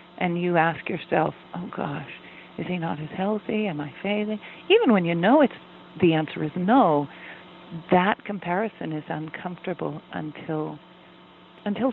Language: English